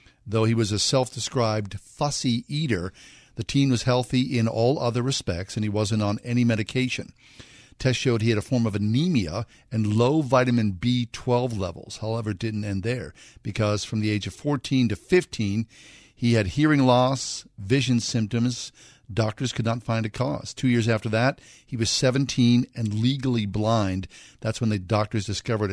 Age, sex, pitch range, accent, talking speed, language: 50-69, male, 105-125 Hz, American, 175 wpm, English